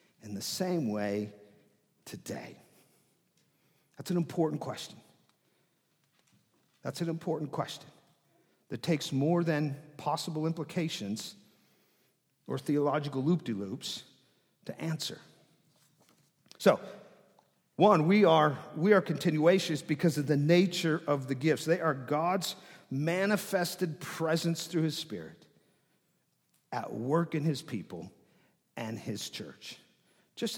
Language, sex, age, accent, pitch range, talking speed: English, male, 50-69, American, 150-210 Hz, 110 wpm